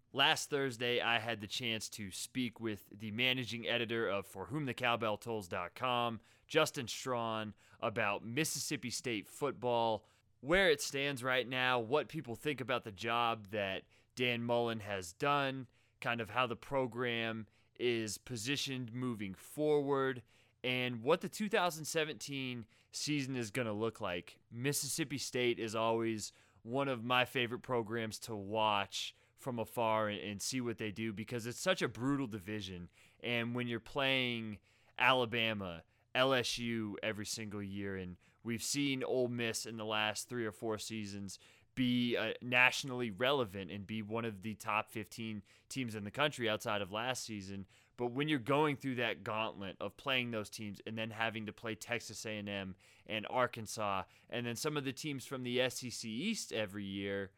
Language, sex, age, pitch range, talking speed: English, male, 20-39, 110-130 Hz, 160 wpm